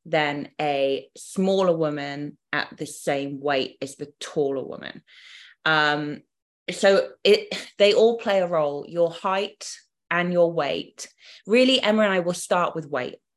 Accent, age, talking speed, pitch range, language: British, 20-39, 150 wpm, 145-170 Hz, English